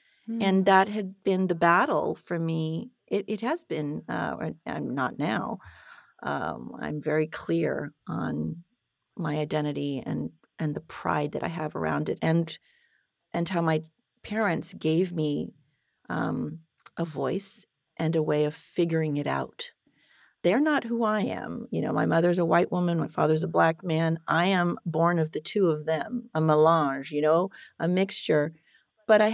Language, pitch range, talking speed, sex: English, 160-210 Hz, 170 wpm, female